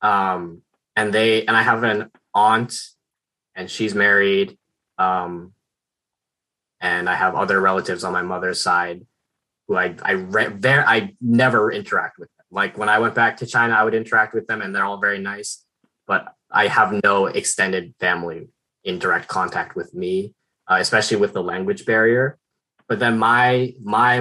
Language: English